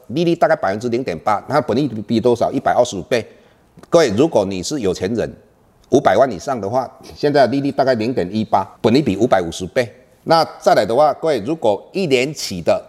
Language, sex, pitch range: Chinese, male, 115-165 Hz